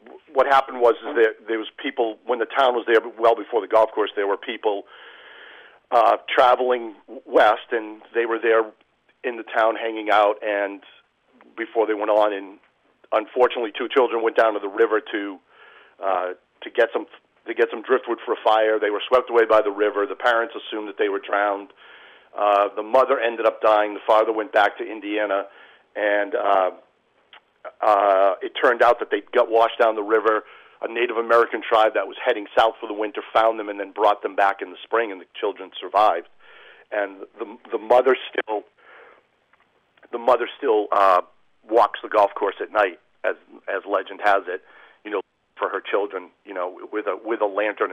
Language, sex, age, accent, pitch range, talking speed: English, male, 40-59, American, 105-115 Hz, 195 wpm